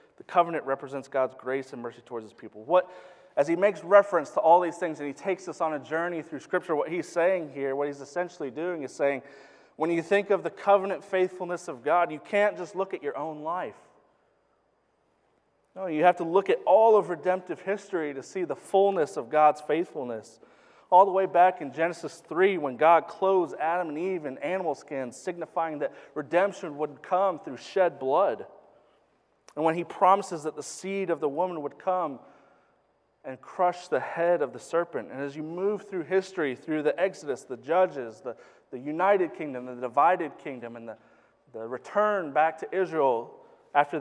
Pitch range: 155-195 Hz